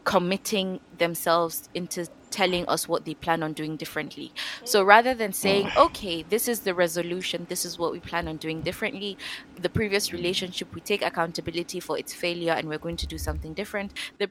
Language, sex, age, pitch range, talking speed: English, female, 20-39, 160-195 Hz, 190 wpm